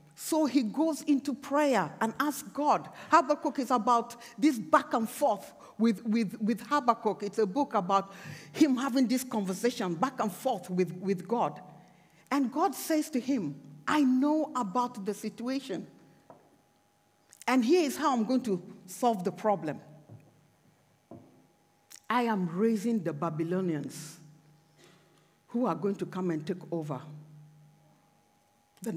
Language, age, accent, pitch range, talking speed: English, 50-69, Nigerian, 180-275 Hz, 135 wpm